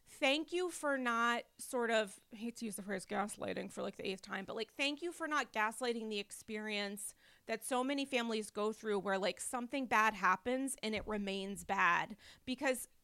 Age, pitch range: 30-49, 210-270 Hz